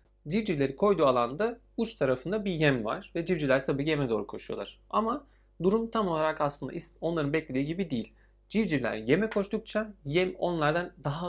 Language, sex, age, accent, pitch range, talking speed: Turkish, male, 30-49, native, 125-175 Hz, 155 wpm